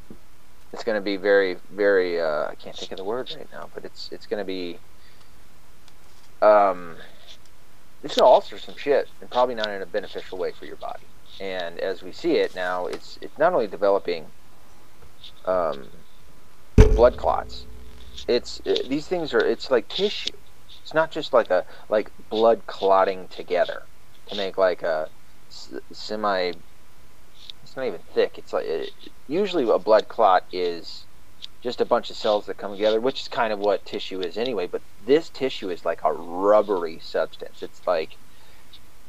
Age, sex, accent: 30-49, male, American